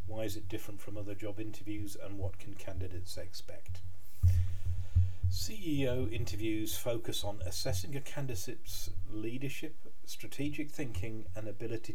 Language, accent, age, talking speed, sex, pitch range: English, British, 40-59, 125 wpm, male, 90-110 Hz